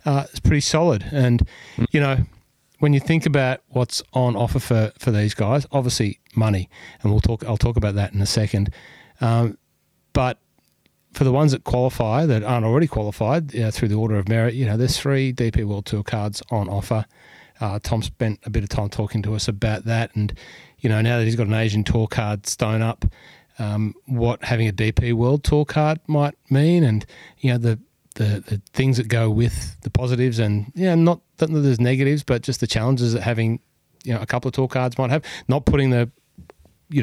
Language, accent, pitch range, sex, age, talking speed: English, Australian, 110-130 Hz, male, 30-49, 205 wpm